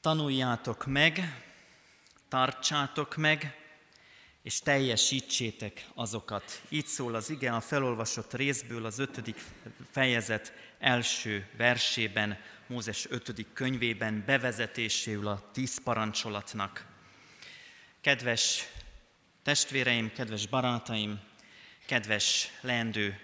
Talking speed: 85 wpm